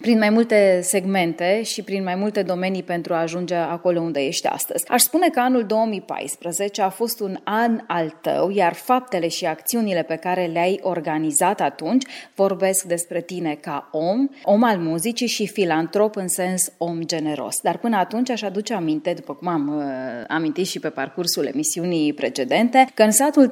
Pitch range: 175-225 Hz